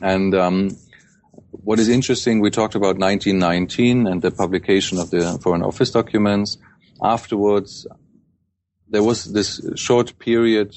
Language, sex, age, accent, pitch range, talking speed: English, male, 30-49, German, 90-105 Hz, 130 wpm